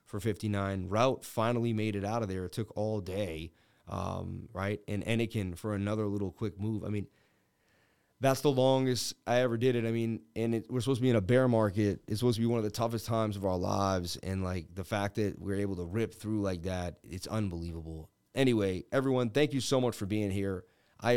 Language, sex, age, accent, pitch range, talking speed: English, male, 30-49, American, 100-125 Hz, 220 wpm